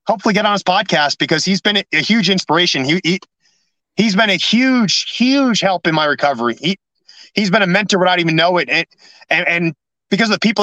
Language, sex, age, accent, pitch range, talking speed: English, male, 30-49, American, 165-205 Hz, 210 wpm